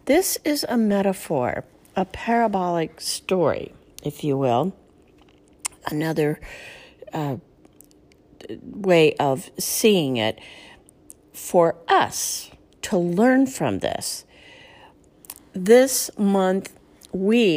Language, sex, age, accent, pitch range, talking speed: English, female, 50-69, American, 145-215 Hz, 85 wpm